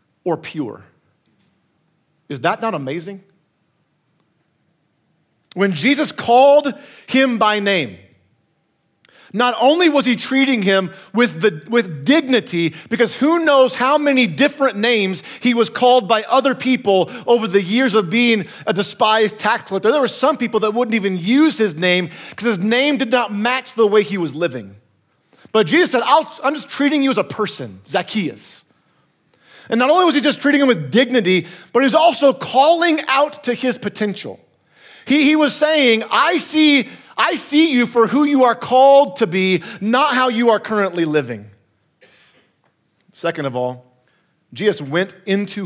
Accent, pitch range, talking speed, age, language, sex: American, 160-255 Hz, 165 wpm, 40-59, English, male